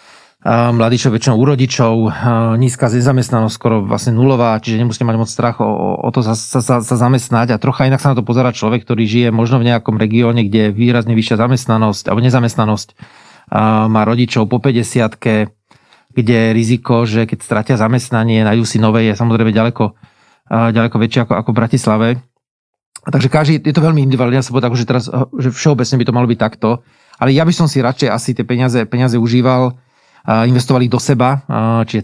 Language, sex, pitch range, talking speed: Slovak, male, 115-130 Hz, 180 wpm